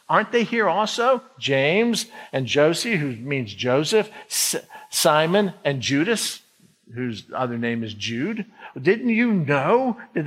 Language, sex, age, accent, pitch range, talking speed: English, male, 50-69, American, 130-210 Hz, 130 wpm